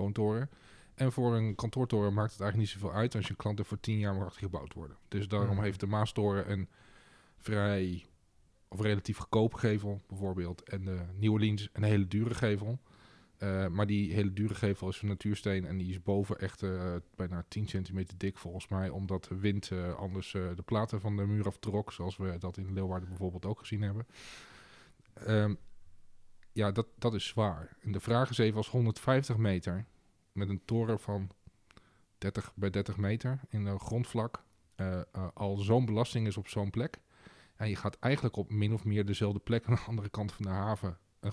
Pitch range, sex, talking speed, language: 95-110 Hz, male, 195 wpm, English